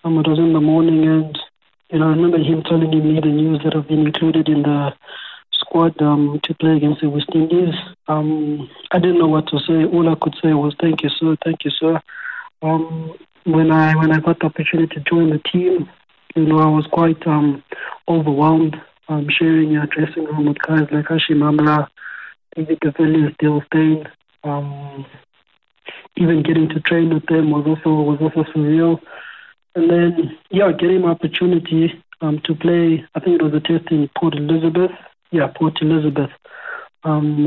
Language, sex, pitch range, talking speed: English, male, 150-165 Hz, 185 wpm